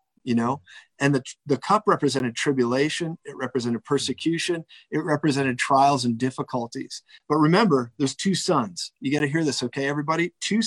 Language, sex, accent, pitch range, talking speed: English, male, American, 135-165 Hz, 165 wpm